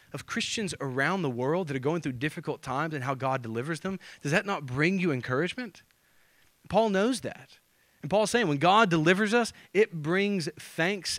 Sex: male